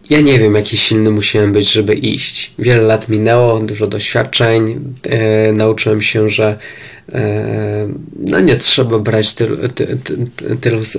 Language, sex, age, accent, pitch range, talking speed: Polish, male, 20-39, native, 110-120 Hz, 120 wpm